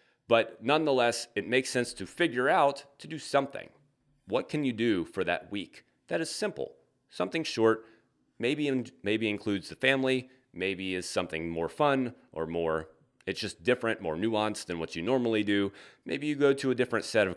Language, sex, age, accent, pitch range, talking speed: English, male, 30-49, American, 95-130 Hz, 185 wpm